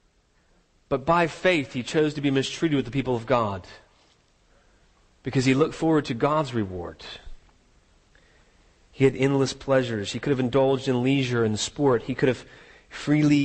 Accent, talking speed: American, 160 wpm